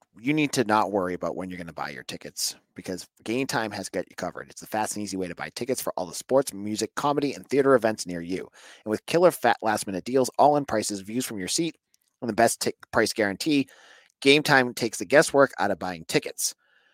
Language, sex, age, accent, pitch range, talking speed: English, male, 30-49, American, 105-145 Hz, 240 wpm